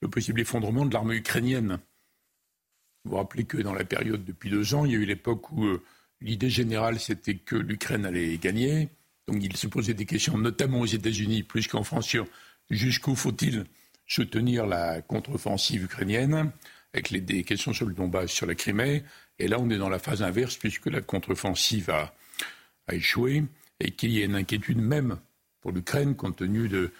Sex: male